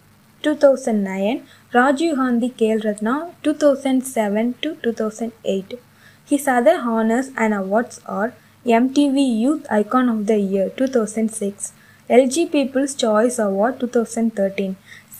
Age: 20-39